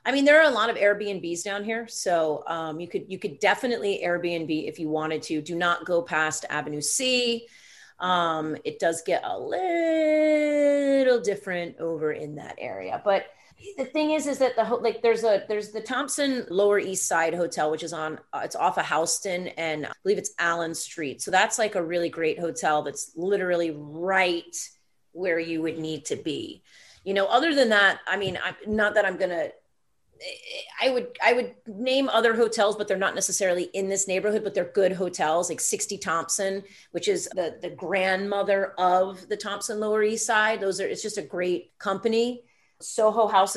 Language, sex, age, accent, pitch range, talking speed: English, female, 30-49, American, 170-230 Hz, 195 wpm